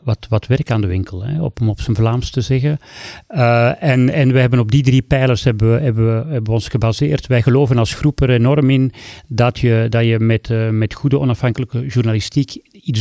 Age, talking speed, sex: 40-59, 210 wpm, male